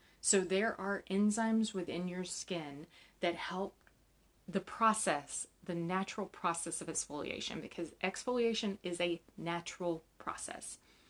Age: 30-49